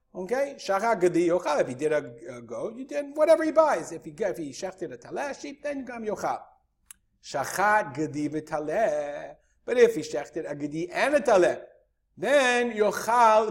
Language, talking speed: English, 165 wpm